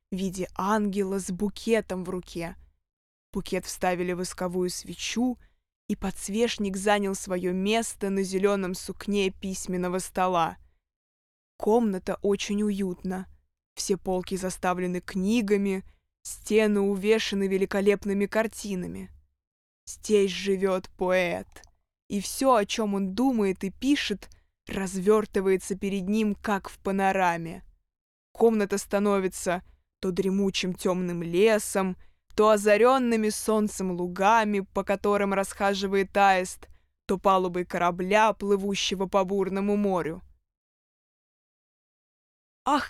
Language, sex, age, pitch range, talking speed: Russian, female, 20-39, 185-210 Hz, 100 wpm